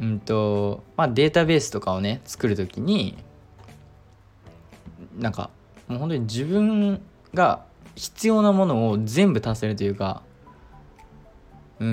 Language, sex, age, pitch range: Japanese, male, 20-39, 100-145 Hz